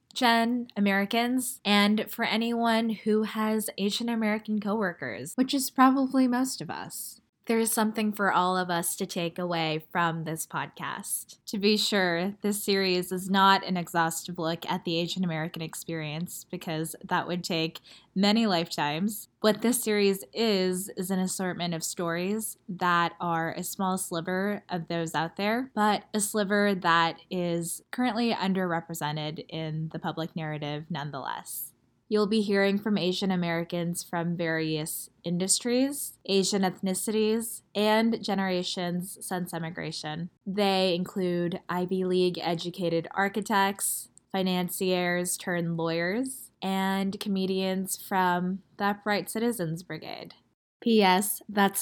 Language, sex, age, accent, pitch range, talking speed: English, female, 10-29, American, 170-210 Hz, 125 wpm